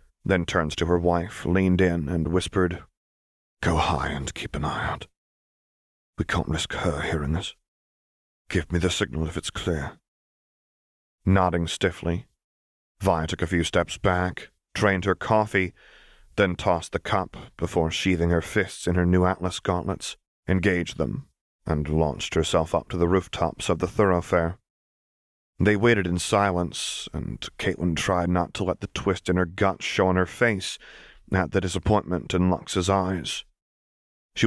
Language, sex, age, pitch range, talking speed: English, male, 30-49, 80-95 Hz, 160 wpm